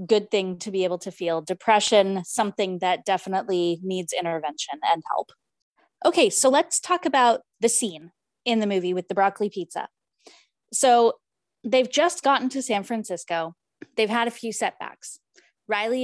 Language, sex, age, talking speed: English, female, 20-39, 155 wpm